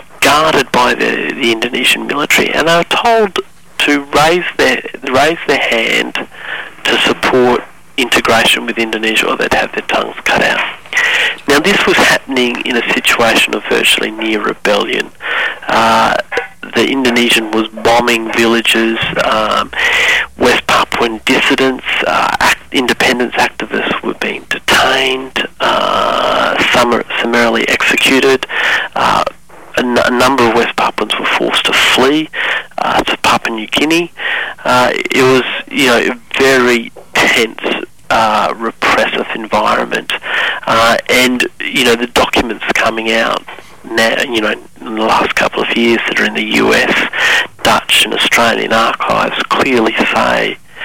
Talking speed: 135 wpm